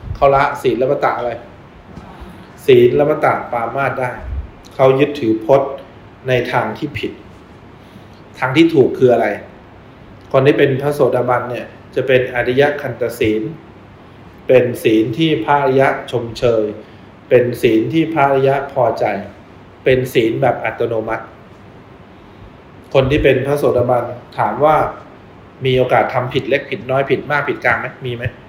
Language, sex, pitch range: English, male, 110-145 Hz